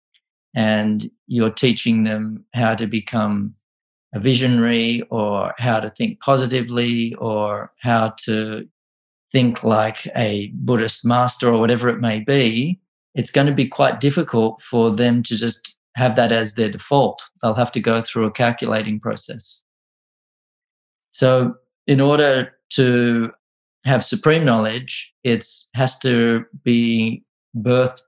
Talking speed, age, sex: 130 wpm, 40-59, male